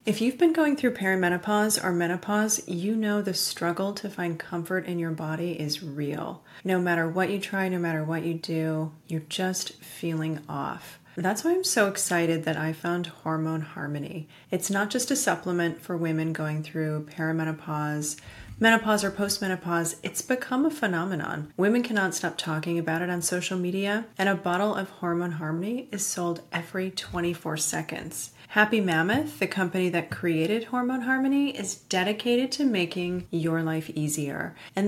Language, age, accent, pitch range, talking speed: English, 30-49, American, 160-200 Hz, 165 wpm